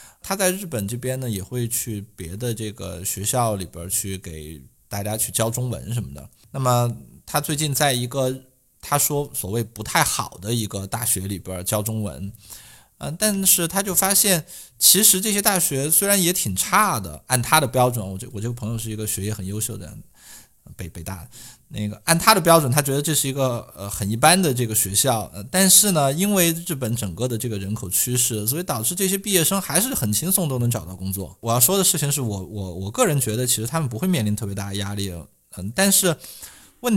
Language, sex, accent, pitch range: Chinese, male, native, 105-155 Hz